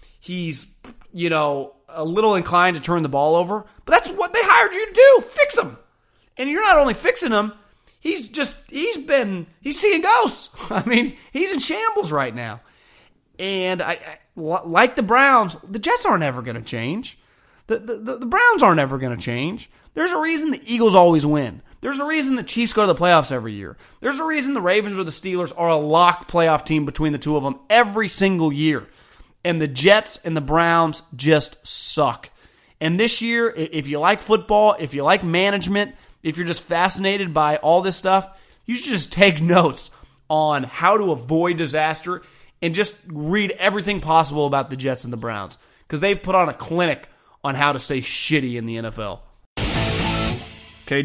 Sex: male